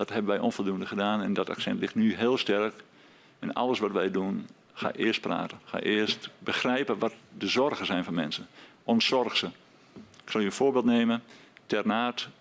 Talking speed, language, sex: 185 wpm, Dutch, male